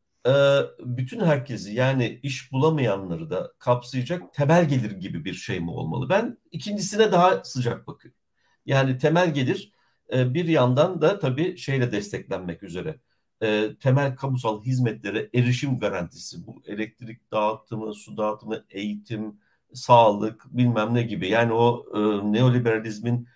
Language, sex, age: Turkish, male, 50-69